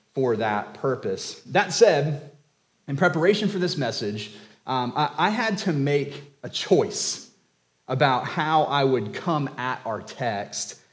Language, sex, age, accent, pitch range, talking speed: English, male, 30-49, American, 110-155 Hz, 145 wpm